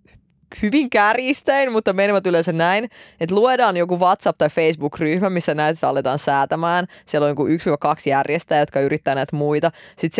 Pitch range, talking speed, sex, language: 150-180 Hz, 155 wpm, female, Finnish